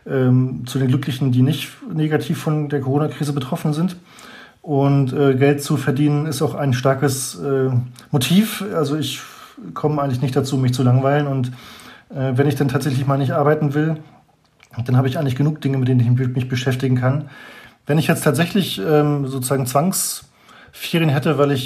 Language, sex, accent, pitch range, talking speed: German, male, German, 135-150 Hz, 180 wpm